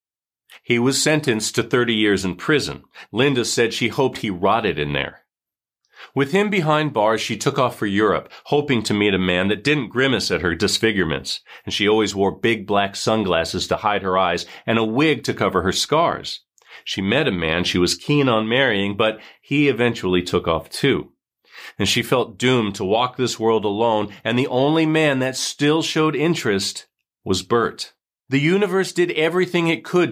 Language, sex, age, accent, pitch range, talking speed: English, male, 40-59, American, 105-140 Hz, 185 wpm